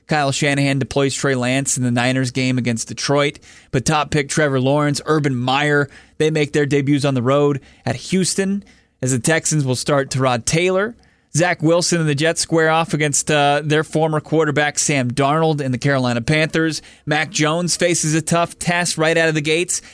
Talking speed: 195 wpm